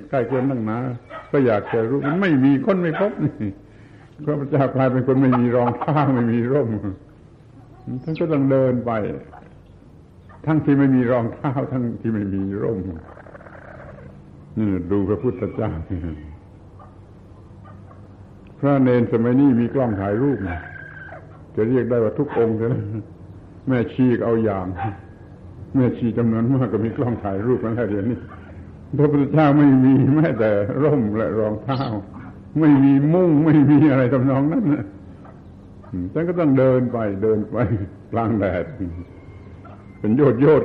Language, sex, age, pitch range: Thai, male, 70-89, 100-130 Hz